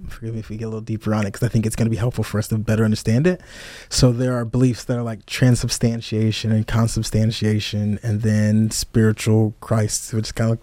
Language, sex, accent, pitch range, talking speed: English, male, American, 110-130 Hz, 245 wpm